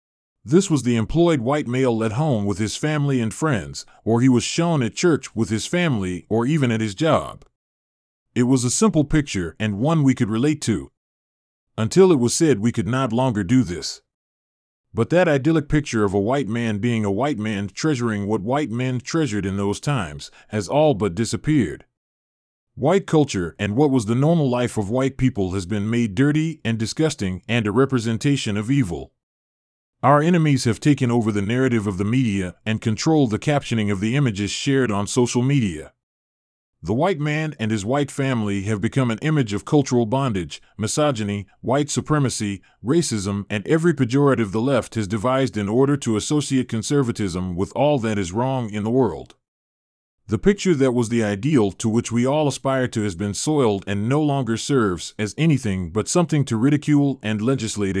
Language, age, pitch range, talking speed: English, 30-49, 105-140 Hz, 185 wpm